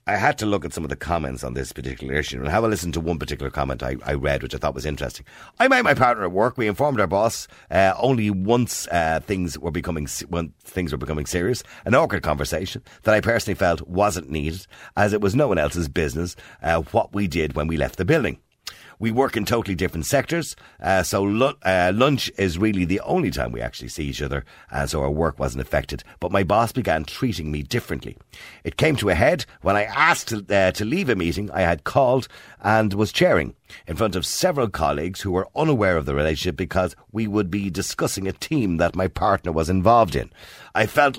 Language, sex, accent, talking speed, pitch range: English, male, Irish, 230 wpm, 80-110 Hz